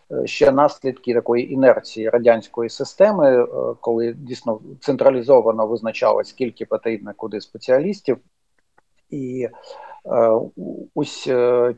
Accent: native